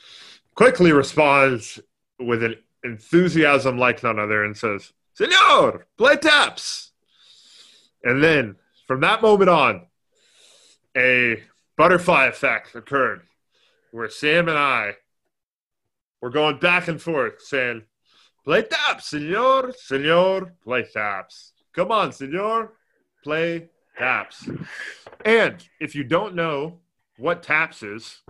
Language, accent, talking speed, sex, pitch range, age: English, American, 110 wpm, male, 110-160 Hz, 30-49